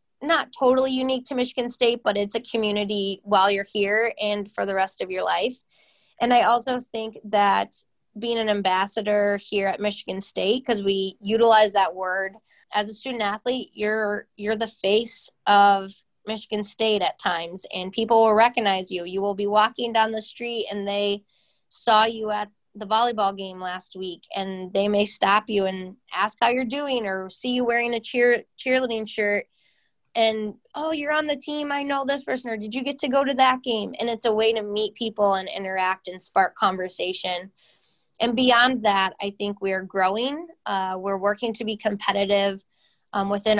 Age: 20-39